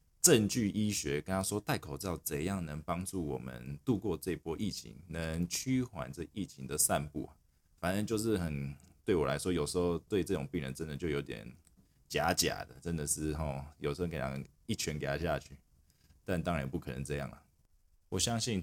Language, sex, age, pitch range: Chinese, male, 20-39, 75-90 Hz